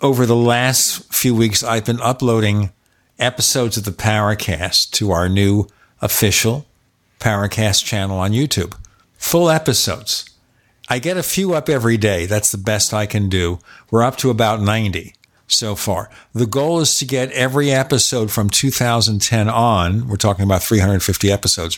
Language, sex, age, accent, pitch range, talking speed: English, male, 50-69, American, 105-130 Hz, 155 wpm